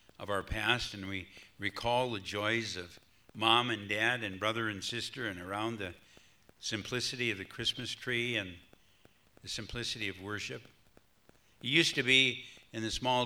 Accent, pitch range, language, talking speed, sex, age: American, 100-115 Hz, English, 165 wpm, male, 60-79